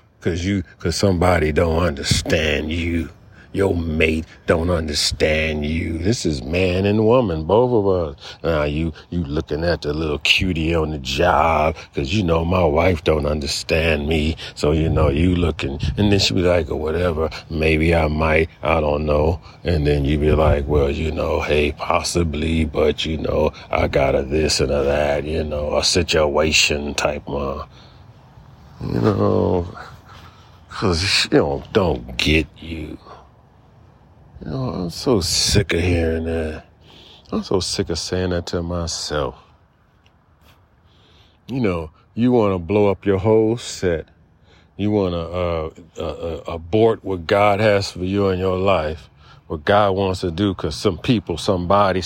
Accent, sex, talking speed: American, male, 165 wpm